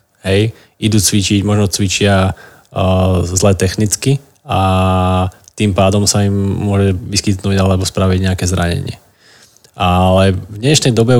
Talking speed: 125 wpm